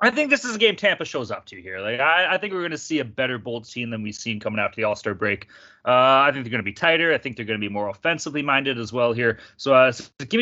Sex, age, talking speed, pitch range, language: male, 30-49, 325 wpm, 120-195 Hz, English